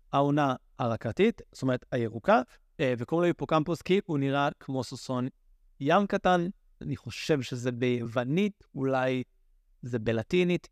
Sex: male